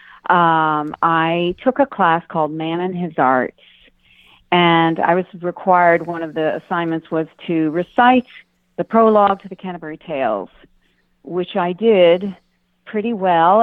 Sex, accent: female, American